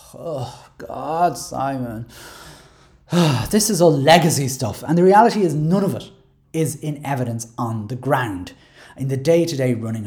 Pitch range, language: 125-205 Hz, English